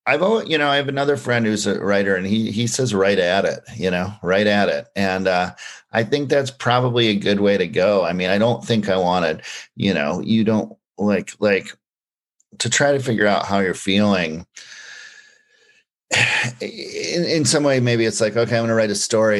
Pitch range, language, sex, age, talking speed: 90-115 Hz, English, male, 40-59, 210 wpm